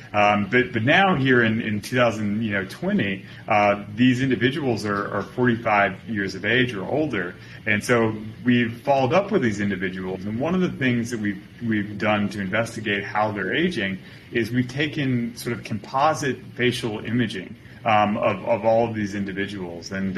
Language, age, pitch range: English, 30-49, 105-125 Hz